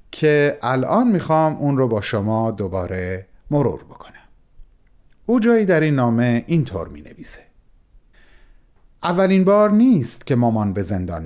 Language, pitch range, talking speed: Persian, 115-170 Hz, 140 wpm